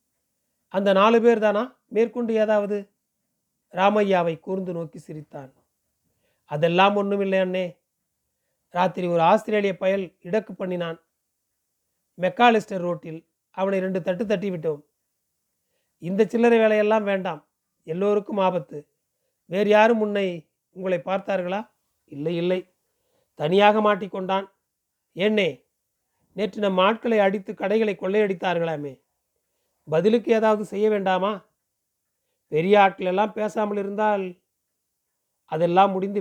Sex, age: male, 30-49